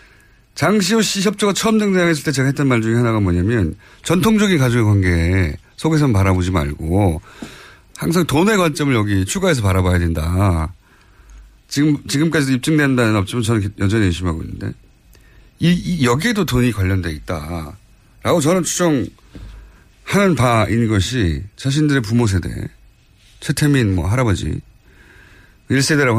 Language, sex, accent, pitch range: Korean, male, native, 100-155 Hz